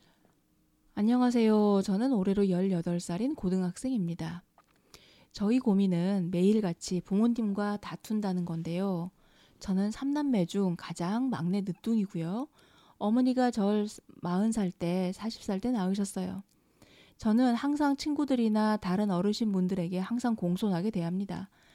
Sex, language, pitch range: female, Korean, 185-235 Hz